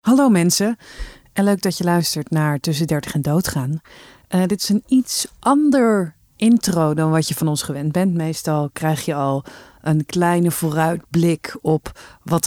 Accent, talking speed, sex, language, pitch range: Dutch, 165 wpm, female, Dutch, 155-190 Hz